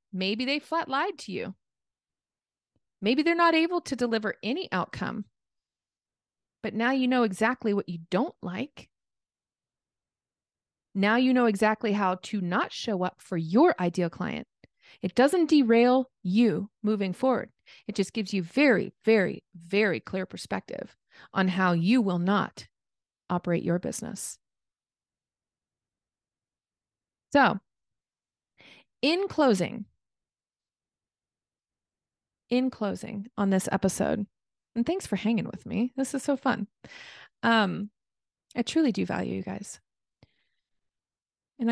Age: 30-49